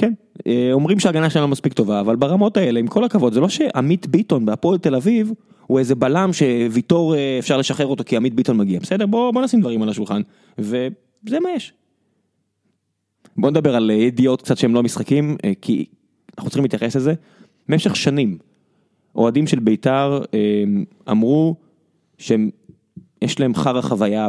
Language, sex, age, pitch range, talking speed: Hebrew, male, 20-39, 115-175 Hz, 160 wpm